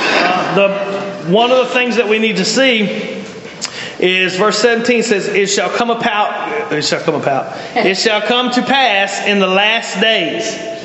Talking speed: 175 wpm